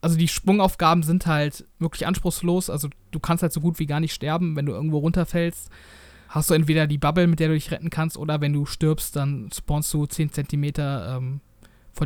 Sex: male